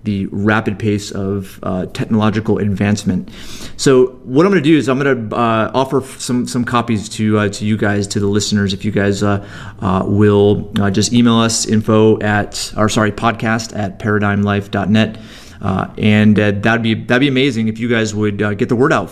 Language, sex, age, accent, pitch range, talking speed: English, male, 30-49, American, 105-120 Hz, 200 wpm